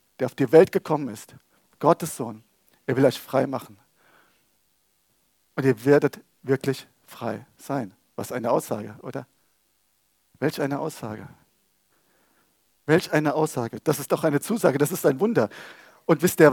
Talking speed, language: 150 wpm, German